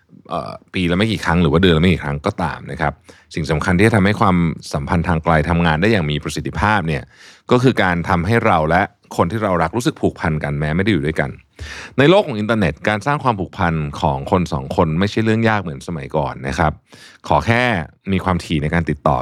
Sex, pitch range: male, 80-110 Hz